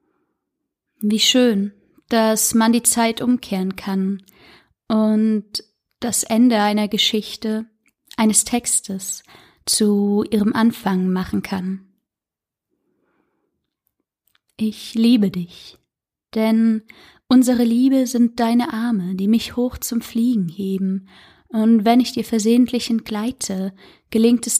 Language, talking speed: German, 105 wpm